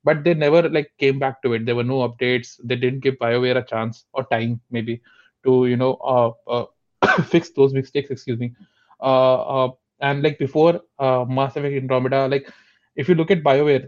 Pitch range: 125-140 Hz